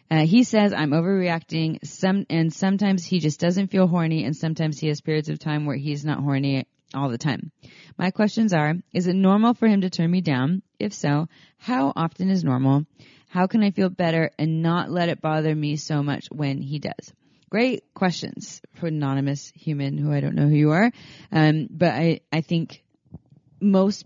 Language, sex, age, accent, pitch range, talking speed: English, female, 30-49, American, 145-185 Hz, 195 wpm